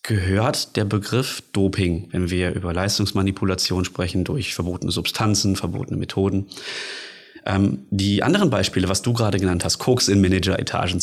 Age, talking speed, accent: 30-49, 140 wpm, German